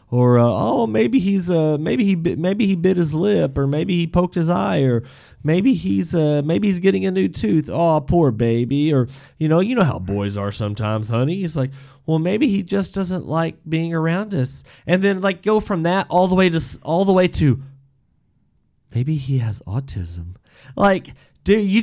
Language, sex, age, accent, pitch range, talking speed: English, male, 30-49, American, 120-165 Hz, 205 wpm